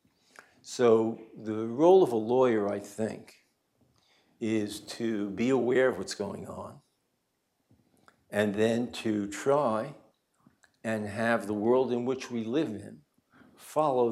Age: 60-79